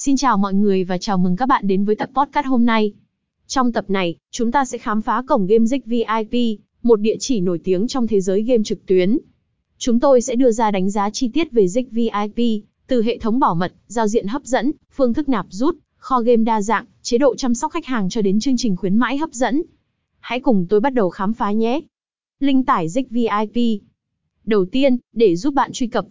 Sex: female